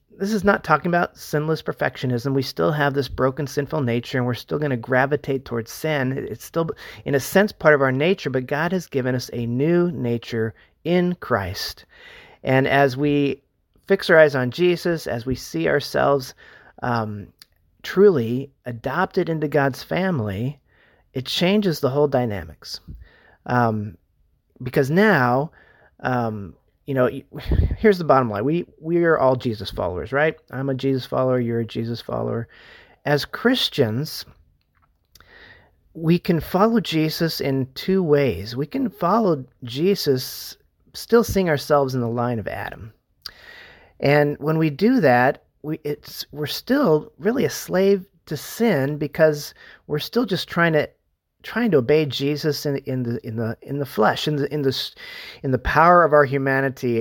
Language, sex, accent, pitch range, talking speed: English, male, American, 125-170 Hz, 160 wpm